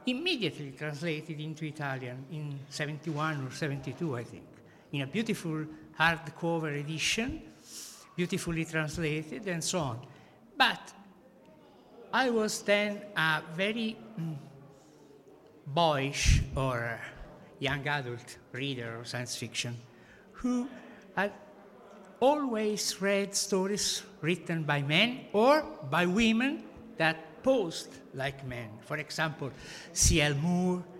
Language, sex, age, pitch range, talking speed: Italian, male, 60-79, 150-220 Hz, 105 wpm